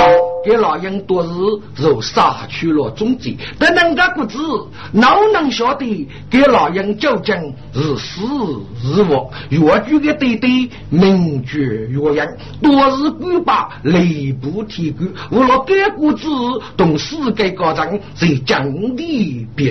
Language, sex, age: Chinese, male, 50-69